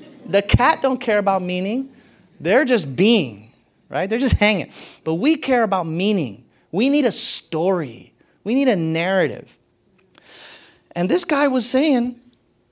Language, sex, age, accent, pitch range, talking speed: English, male, 30-49, American, 175-265 Hz, 145 wpm